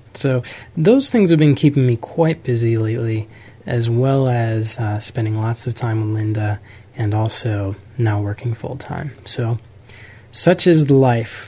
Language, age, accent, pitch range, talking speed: English, 20-39, American, 110-130 Hz, 160 wpm